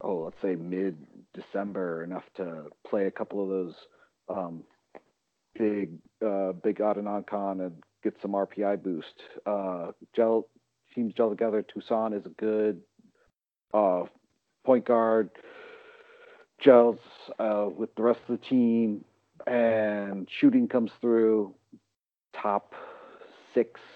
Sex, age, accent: male, 50-69, American